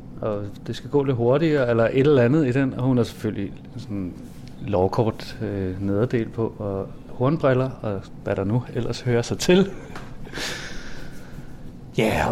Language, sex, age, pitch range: Danish, male, 30-49, 100-130 Hz